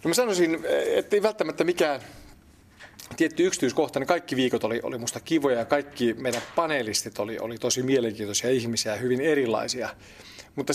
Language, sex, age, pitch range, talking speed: Finnish, male, 40-59, 120-150 Hz, 155 wpm